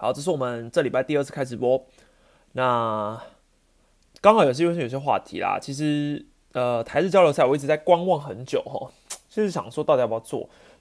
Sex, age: male, 20-39